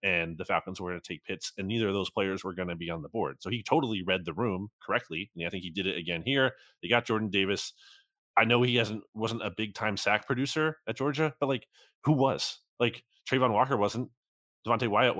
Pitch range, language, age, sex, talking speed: 95-120 Hz, English, 30-49, male, 240 wpm